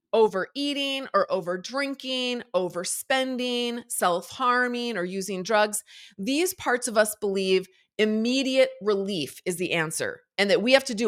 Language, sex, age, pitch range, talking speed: English, female, 30-49, 195-270 Hz, 130 wpm